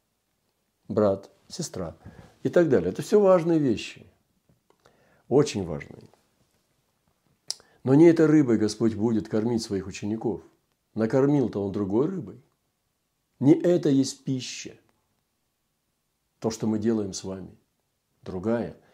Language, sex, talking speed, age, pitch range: Russian, male, 110 wpm, 50-69, 100-125 Hz